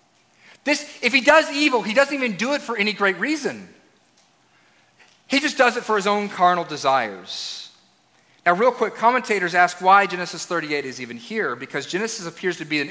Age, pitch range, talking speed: 30-49, 170-225 Hz, 180 wpm